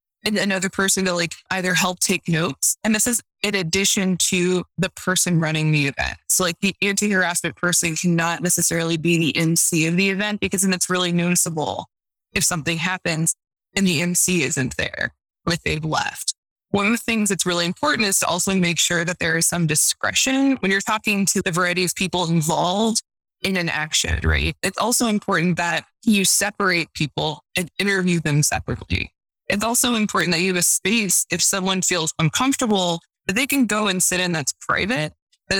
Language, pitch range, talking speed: English, 170-200 Hz, 190 wpm